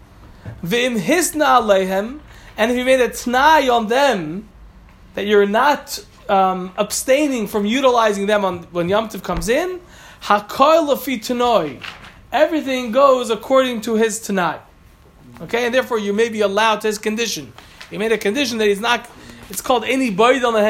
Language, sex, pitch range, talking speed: Italian, male, 195-245 Hz, 135 wpm